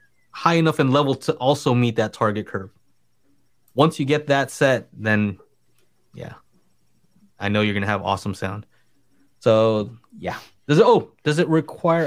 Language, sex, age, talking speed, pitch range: English, male, 30-49, 165 wpm, 110-145 Hz